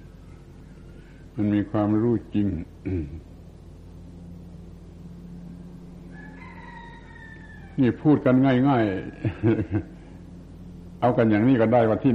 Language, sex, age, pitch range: Thai, male, 70-89, 90-125 Hz